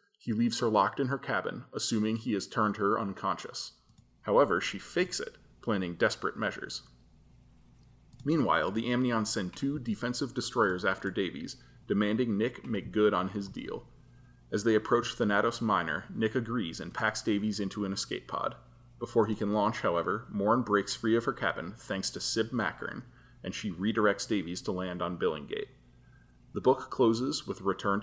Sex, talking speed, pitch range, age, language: male, 170 wpm, 95-115 Hz, 30-49, English